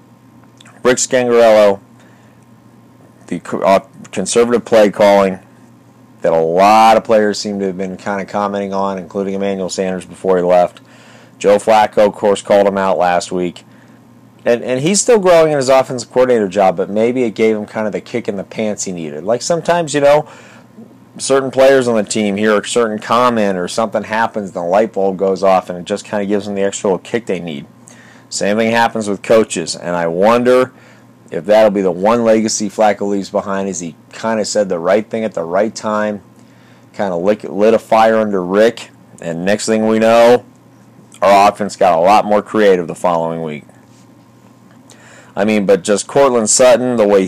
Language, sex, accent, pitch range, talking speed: English, male, American, 100-120 Hz, 195 wpm